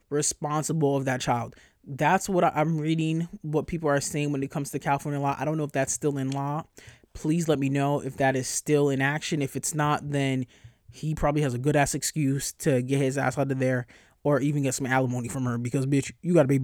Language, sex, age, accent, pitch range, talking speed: English, male, 20-39, American, 135-155 Hz, 240 wpm